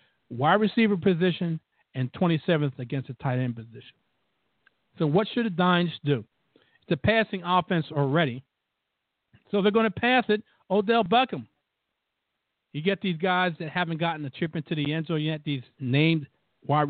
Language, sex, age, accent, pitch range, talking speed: English, male, 50-69, American, 130-170 Hz, 165 wpm